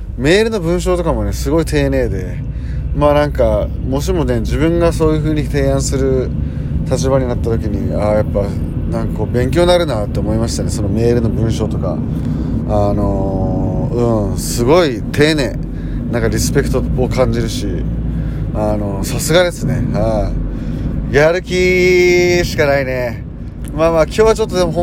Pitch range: 110-160 Hz